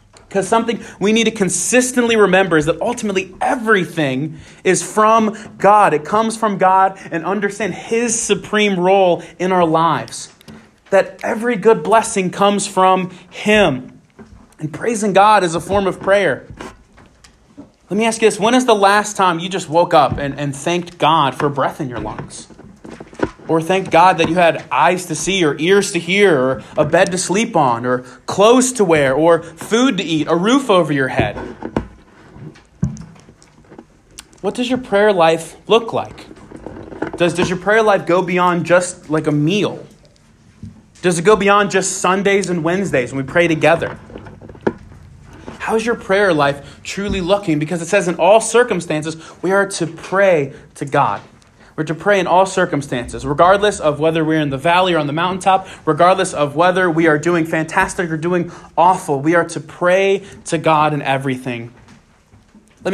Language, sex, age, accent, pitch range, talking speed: English, male, 30-49, American, 160-205 Hz, 175 wpm